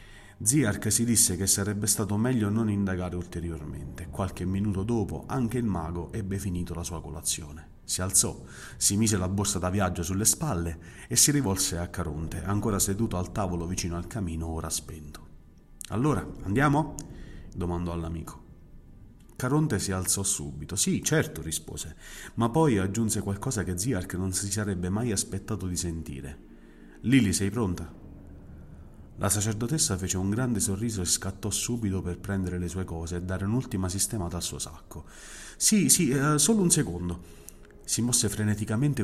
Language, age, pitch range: Italian, 30-49, 85-110 Hz